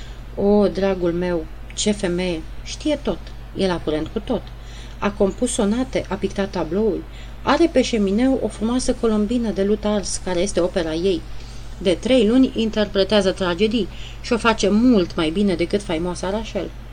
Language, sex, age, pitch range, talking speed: Romanian, female, 30-49, 175-230 Hz, 160 wpm